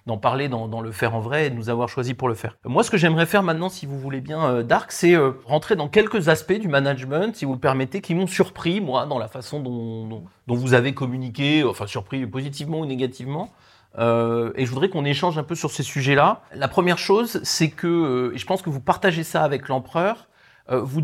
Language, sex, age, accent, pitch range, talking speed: French, male, 30-49, French, 125-175 Hz, 240 wpm